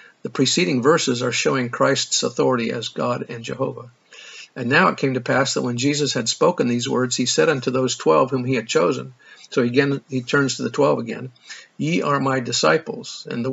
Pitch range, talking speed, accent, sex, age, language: 125-140 Hz, 210 wpm, American, male, 50-69, English